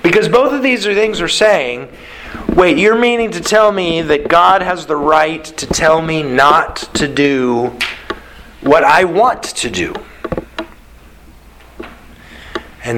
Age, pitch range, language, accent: 50-69, 145-220 Hz, English, American